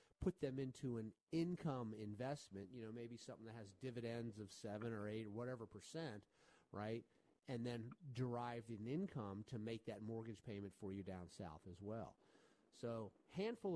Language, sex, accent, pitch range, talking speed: English, male, American, 110-160 Hz, 175 wpm